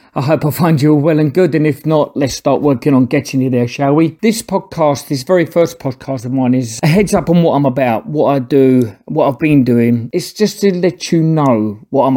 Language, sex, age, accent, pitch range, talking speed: English, male, 40-59, British, 130-165 Hz, 250 wpm